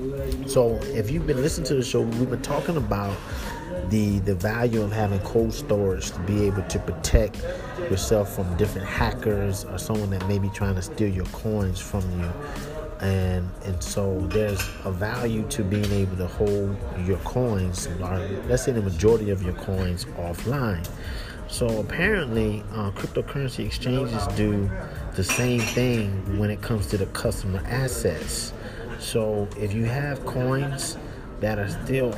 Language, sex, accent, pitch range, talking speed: English, male, American, 95-115 Hz, 160 wpm